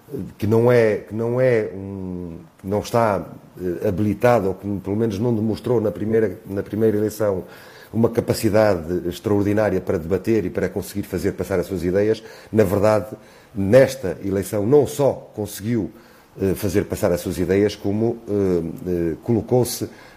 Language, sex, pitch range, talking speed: Portuguese, male, 100-120 Hz, 125 wpm